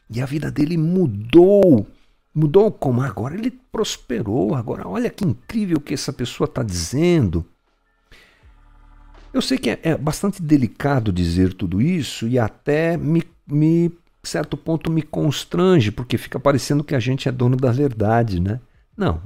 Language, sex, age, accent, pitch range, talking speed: Portuguese, male, 60-79, Brazilian, 85-145 Hz, 155 wpm